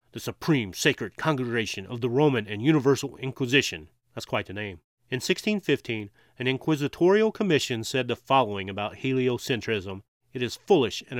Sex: male